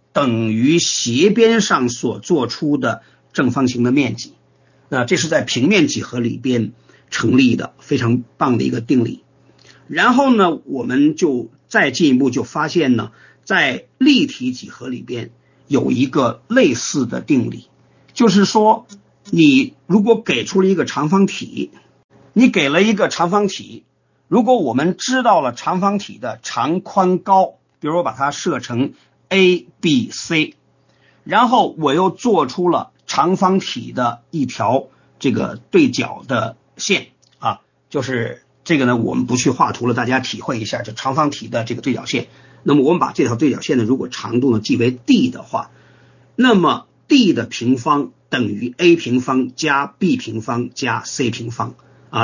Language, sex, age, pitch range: Chinese, male, 50-69, 125-205 Hz